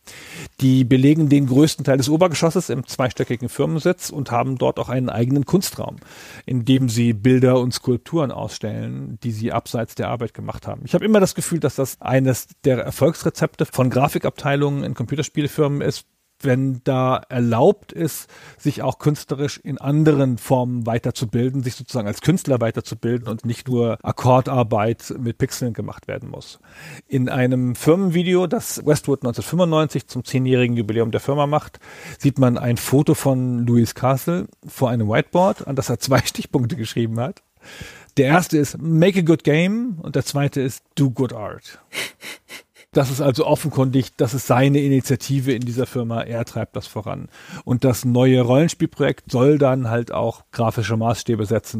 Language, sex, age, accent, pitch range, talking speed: German, male, 40-59, German, 125-155 Hz, 160 wpm